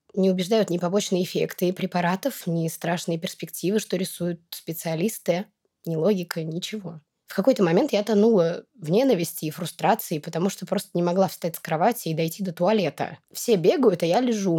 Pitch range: 170-215 Hz